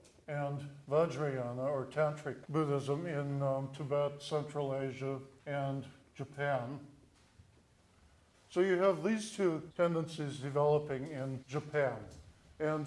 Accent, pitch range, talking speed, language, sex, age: American, 130-155 Hz, 105 wpm, English, male, 50-69